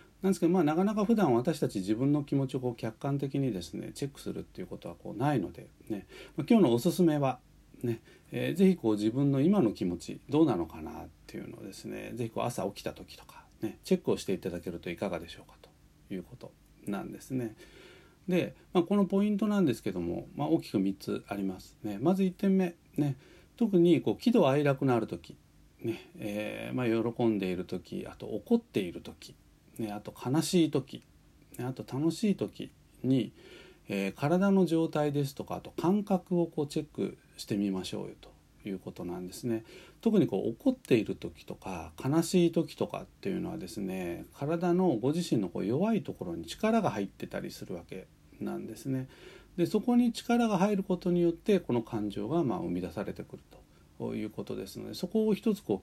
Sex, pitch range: male, 110-180 Hz